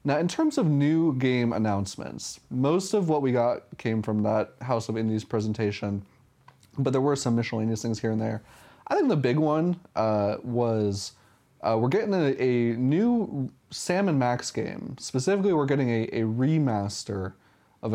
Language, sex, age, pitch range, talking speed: English, male, 20-39, 110-135 Hz, 170 wpm